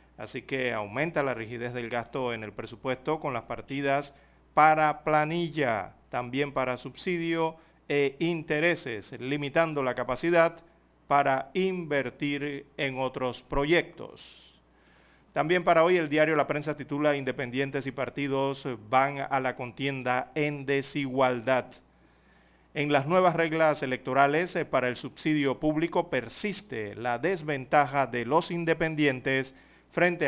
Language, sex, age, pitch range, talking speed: Spanish, male, 40-59, 125-155 Hz, 120 wpm